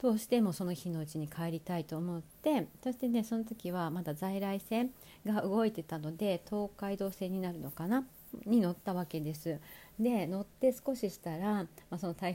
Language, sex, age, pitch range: Japanese, female, 40-59, 160-205 Hz